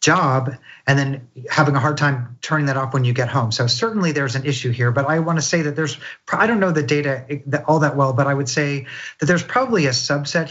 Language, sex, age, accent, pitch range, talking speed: English, male, 40-59, American, 135-170 Hz, 245 wpm